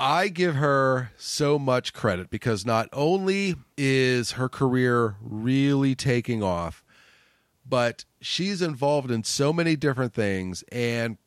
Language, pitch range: English, 110-140 Hz